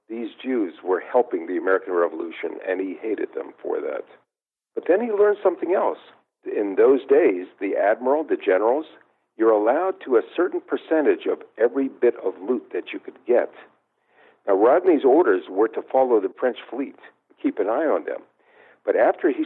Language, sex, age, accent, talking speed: English, male, 60-79, American, 180 wpm